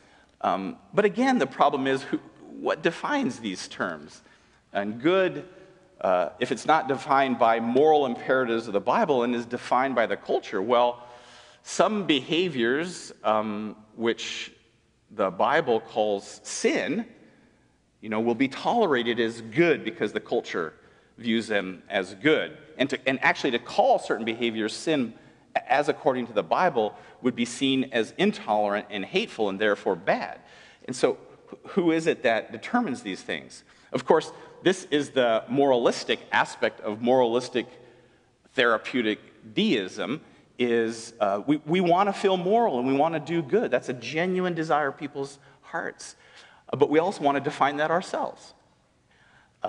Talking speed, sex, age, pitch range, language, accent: 155 wpm, male, 40-59, 115-165 Hz, English, American